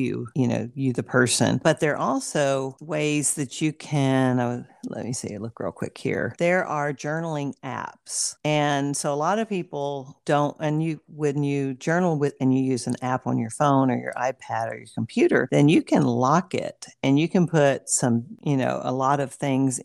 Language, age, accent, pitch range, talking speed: English, 50-69, American, 125-150 Hz, 210 wpm